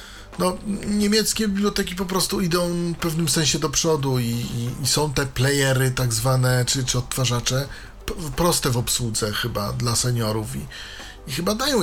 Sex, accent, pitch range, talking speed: male, native, 115-135 Hz, 160 wpm